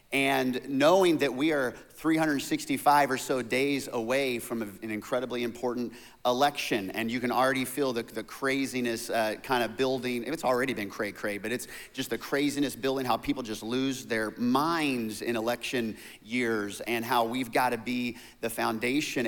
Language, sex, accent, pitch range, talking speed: English, male, American, 110-135 Hz, 170 wpm